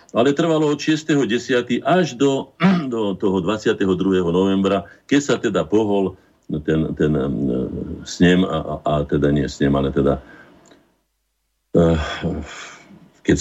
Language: Slovak